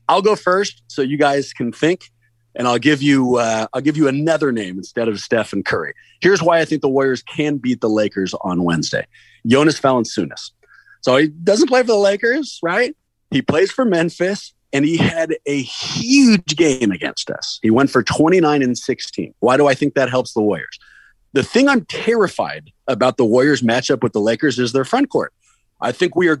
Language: English